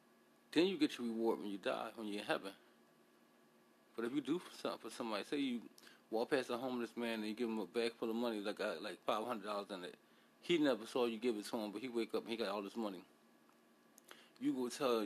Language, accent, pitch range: English, American, 110-140 Hz